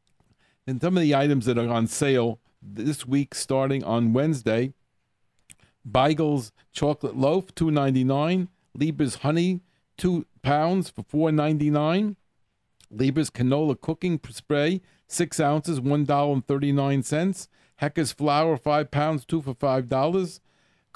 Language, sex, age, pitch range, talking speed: English, male, 50-69, 125-155 Hz, 110 wpm